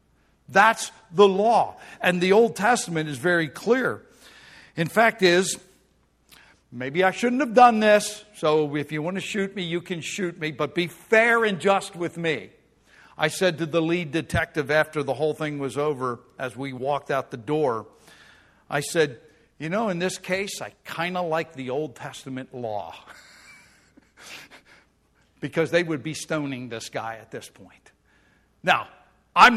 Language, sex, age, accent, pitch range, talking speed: English, male, 60-79, American, 145-190 Hz, 165 wpm